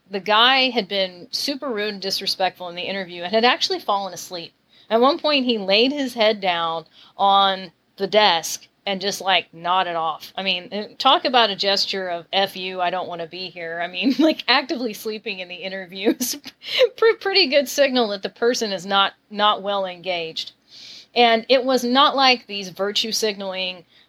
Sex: female